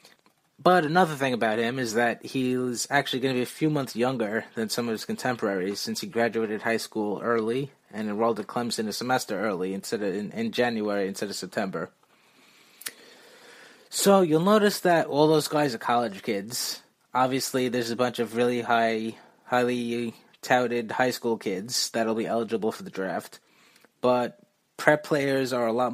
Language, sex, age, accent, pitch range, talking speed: English, male, 20-39, American, 110-130 Hz, 175 wpm